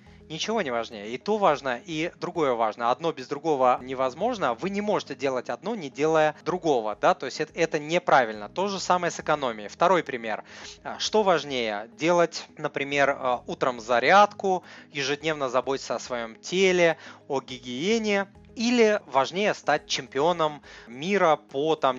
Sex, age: male, 30-49